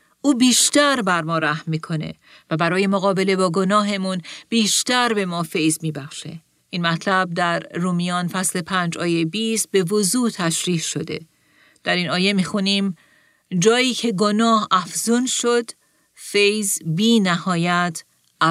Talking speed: 135 wpm